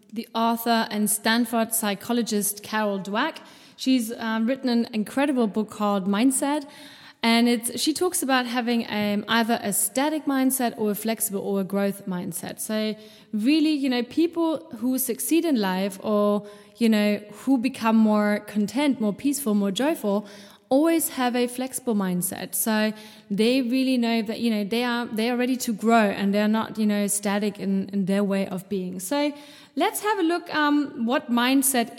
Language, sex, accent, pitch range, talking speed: German, female, German, 205-260 Hz, 170 wpm